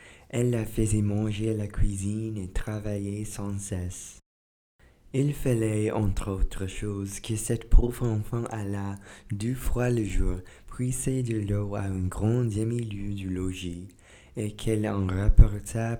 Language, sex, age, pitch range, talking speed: English, male, 20-39, 100-115 Hz, 145 wpm